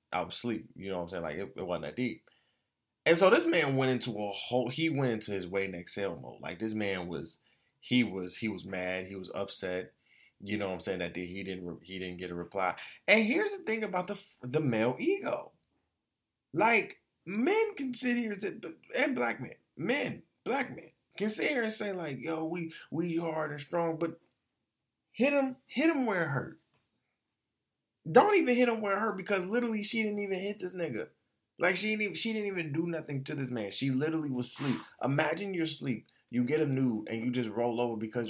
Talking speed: 215 wpm